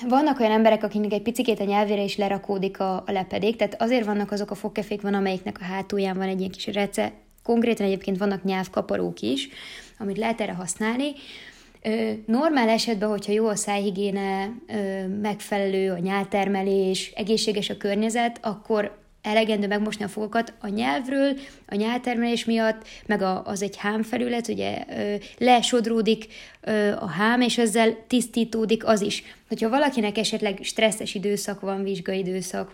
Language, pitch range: Hungarian, 200-225 Hz